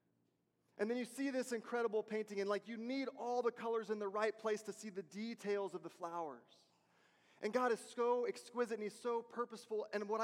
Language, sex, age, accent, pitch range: Japanese, male, 30-49, American, 180-225 Hz